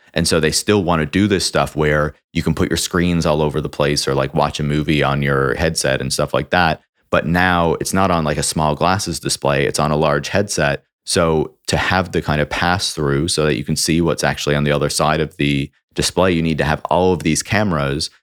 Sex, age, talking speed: male, 30-49, 245 wpm